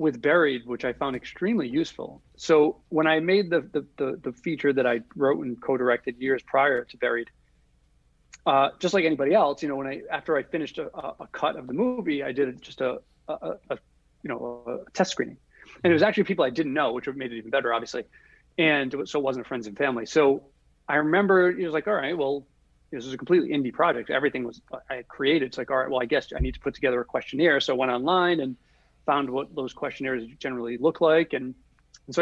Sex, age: male, 40-59